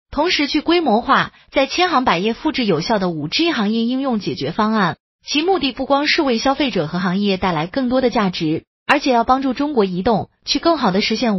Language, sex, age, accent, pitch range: Chinese, female, 30-49, native, 205-285 Hz